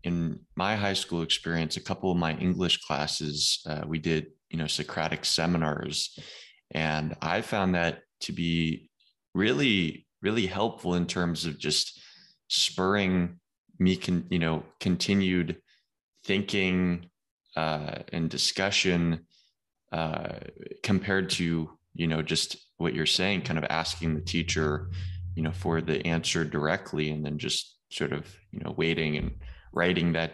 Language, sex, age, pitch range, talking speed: English, male, 20-39, 80-90 Hz, 140 wpm